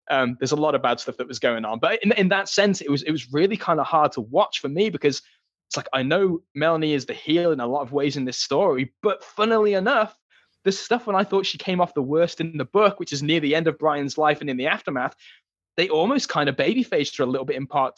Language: English